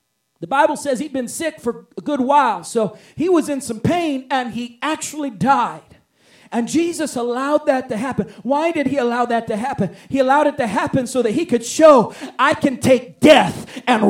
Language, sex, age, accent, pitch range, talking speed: English, male, 40-59, American, 270-355 Hz, 205 wpm